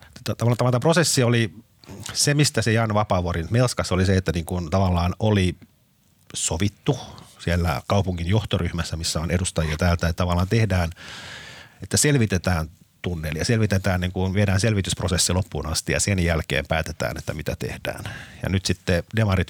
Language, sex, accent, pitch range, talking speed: Finnish, male, native, 85-105 Hz, 150 wpm